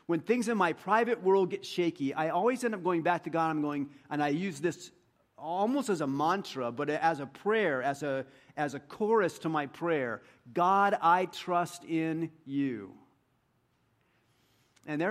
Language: English